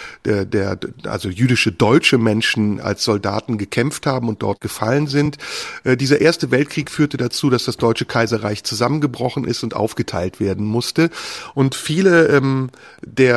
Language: German